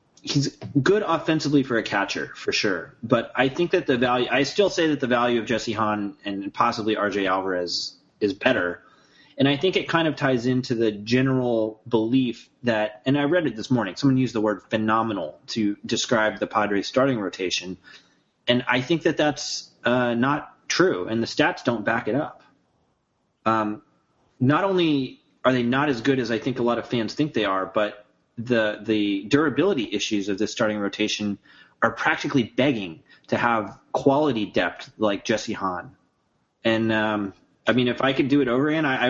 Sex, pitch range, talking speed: male, 110-140 Hz, 190 wpm